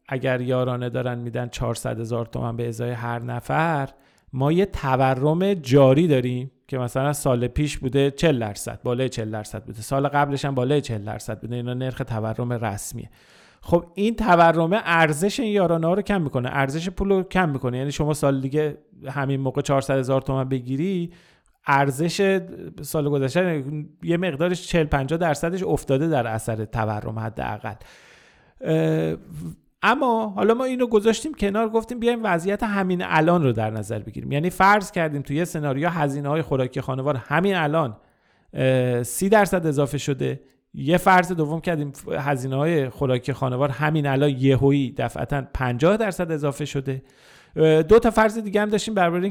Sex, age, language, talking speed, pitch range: male, 40-59, Persian, 155 wpm, 125-170 Hz